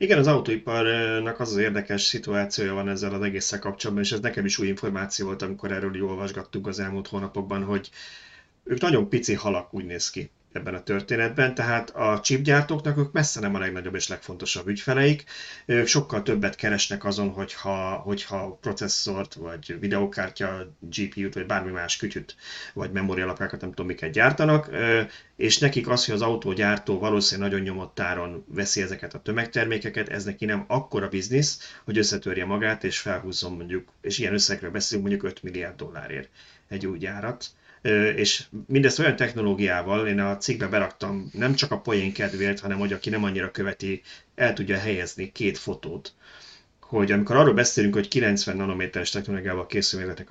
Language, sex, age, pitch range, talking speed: Hungarian, male, 30-49, 95-115 Hz, 165 wpm